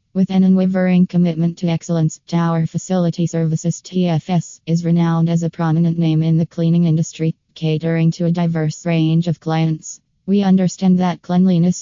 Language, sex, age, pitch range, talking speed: English, female, 20-39, 165-175 Hz, 150 wpm